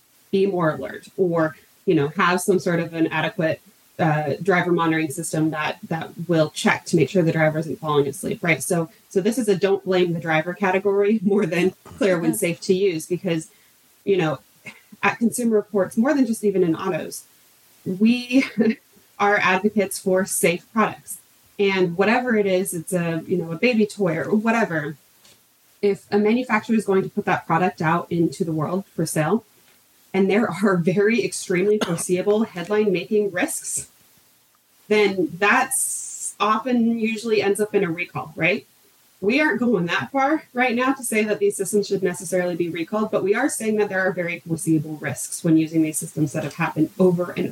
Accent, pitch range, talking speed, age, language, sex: American, 165-205 Hz, 185 wpm, 30-49, English, female